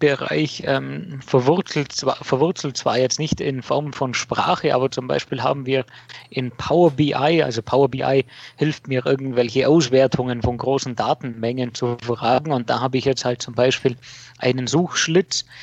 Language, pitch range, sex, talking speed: German, 130-150 Hz, male, 155 wpm